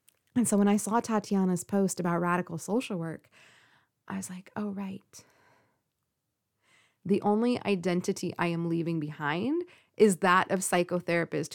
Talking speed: 140 wpm